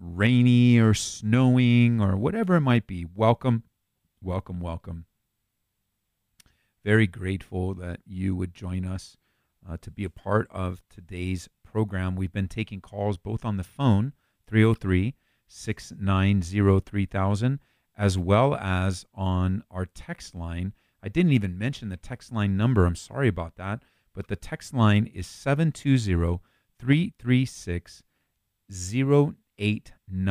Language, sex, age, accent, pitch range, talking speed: English, male, 40-59, American, 95-130 Hz, 125 wpm